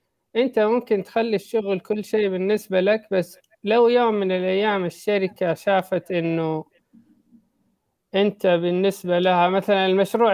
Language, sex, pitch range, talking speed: Arabic, male, 170-215 Hz, 120 wpm